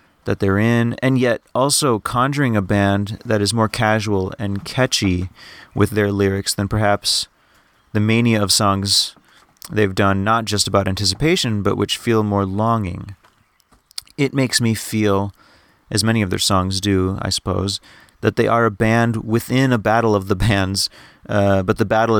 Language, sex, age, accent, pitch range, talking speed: English, male, 30-49, American, 100-120 Hz, 170 wpm